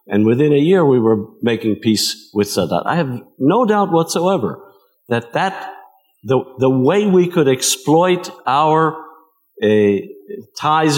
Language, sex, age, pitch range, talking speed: English, male, 50-69, 100-145 Hz, 140 wpm